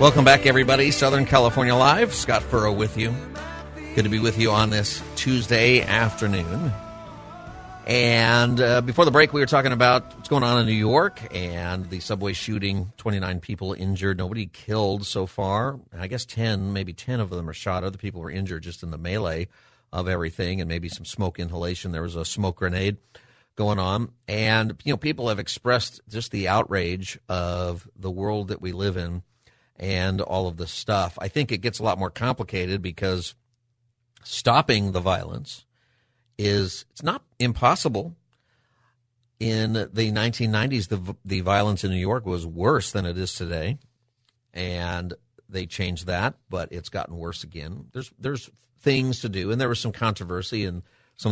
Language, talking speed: English, 175 wpm